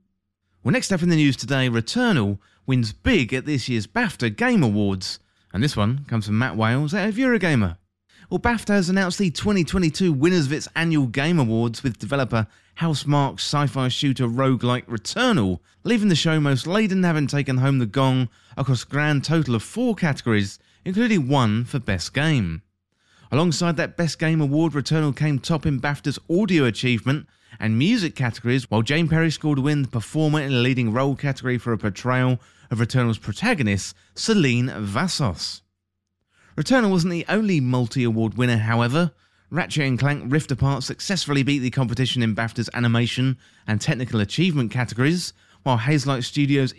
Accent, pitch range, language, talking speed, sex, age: British, 115-160 Hz, English, 165 wpm, male, 30-49